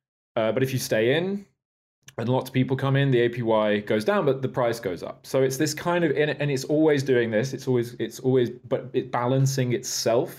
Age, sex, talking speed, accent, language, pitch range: 20-39, male, 225 wpm, British, English, 110-130 Hz